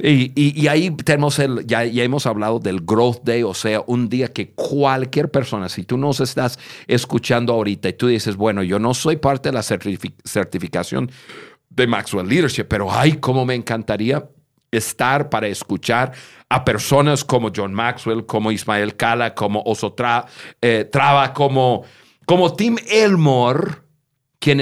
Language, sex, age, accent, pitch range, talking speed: Spanish, male, 50-69, Mexican, 115-150 Hz, 160 wpm